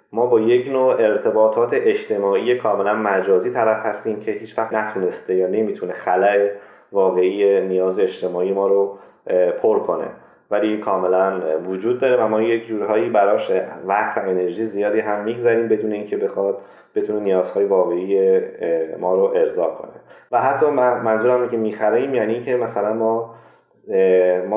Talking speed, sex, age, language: 145 wpm, male, 30-49, Persian